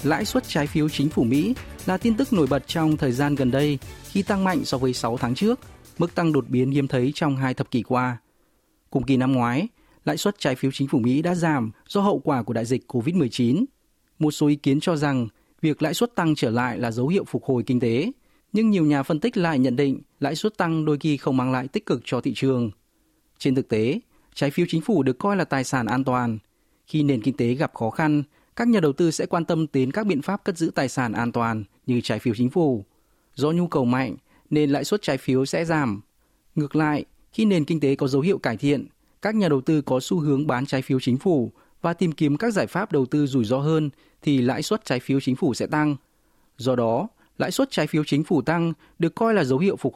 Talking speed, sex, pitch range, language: 250 wpm, male, 130-170 Hz, Vietnamese